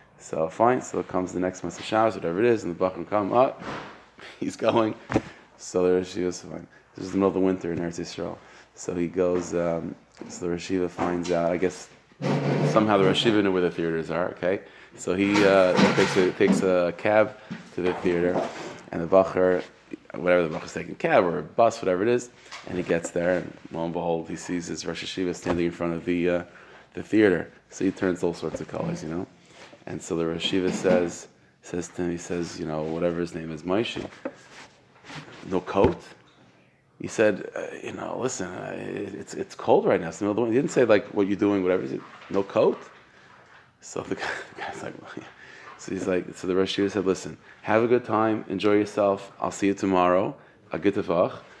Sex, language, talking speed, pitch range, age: male, English, 210 wpm, 85-95 Hz, 20-39